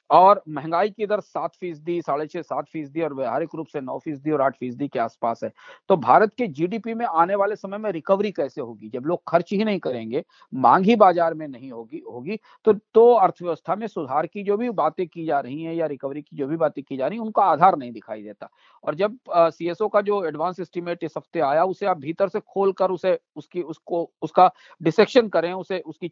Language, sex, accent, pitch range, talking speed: Hindi, male, native, 165-225 Hz, 225 wpm